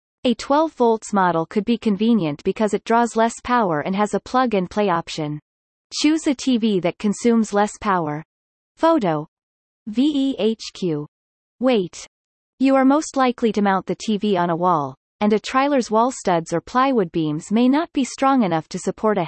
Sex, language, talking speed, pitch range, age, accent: female, English, 165 wpm, 185-245 Hz, 30-49, American